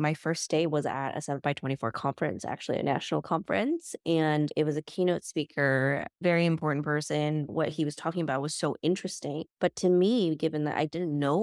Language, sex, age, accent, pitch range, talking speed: English, female, 20-39, American, 140-170 Hz, 205 wpm